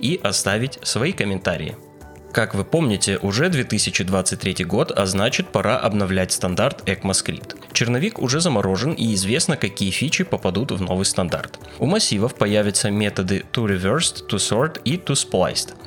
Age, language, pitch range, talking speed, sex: 20-39, Russian, 95-135 Hz, 145 wpm, male